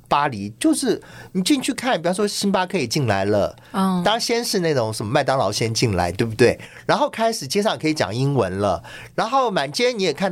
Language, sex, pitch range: Chinese, male, 115-185 Hz